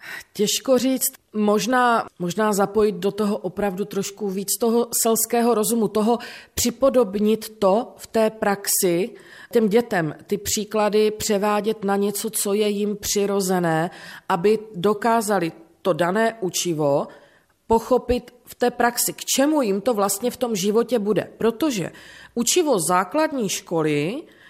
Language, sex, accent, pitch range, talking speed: Czech, female, native, 200-245 Hz, 125 wpm